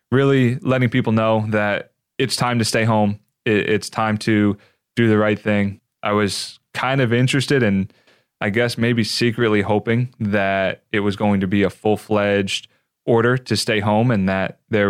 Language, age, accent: English, 20-39, American